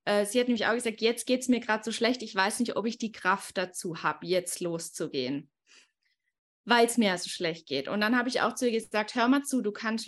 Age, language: 20-39, German